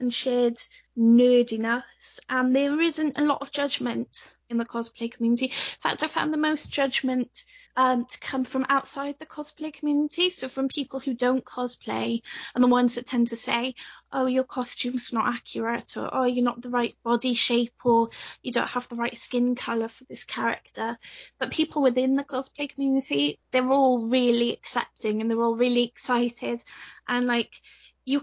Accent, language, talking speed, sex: British, English, 180 wpm, female